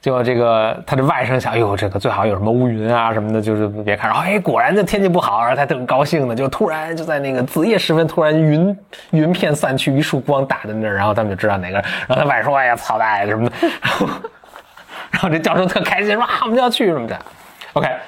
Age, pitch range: 20-39, 110-165 Hz